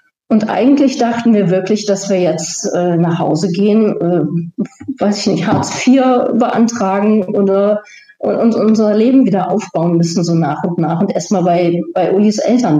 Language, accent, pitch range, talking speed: German, German, 170-215 Hz, 170 wpm